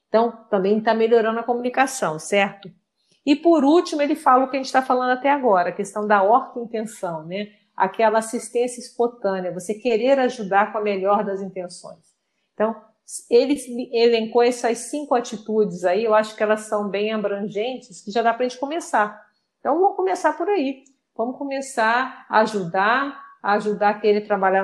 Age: 50-69